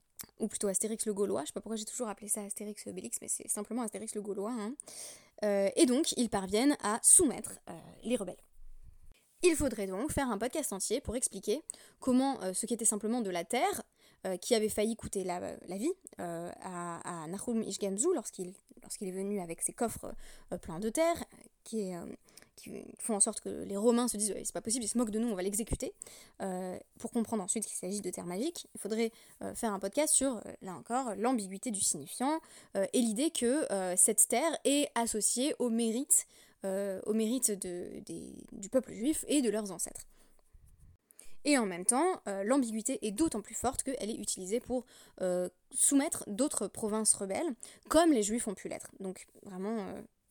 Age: 20-39